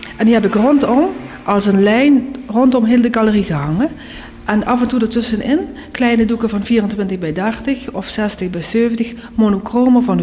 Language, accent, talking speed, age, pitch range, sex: Dutch, Dutch, 175 wpm, 40-59, 170-225 Hz, female